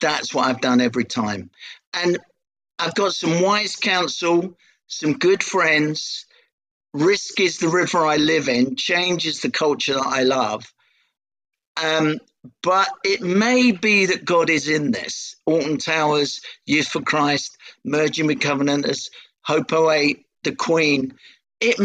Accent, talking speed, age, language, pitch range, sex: British, 145 wpm, 50-69, English, 140-190 Hz, male